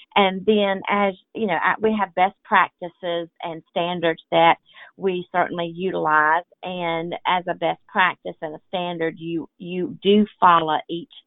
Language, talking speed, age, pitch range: English, 150 wpm, 40-59, 160-195 Hz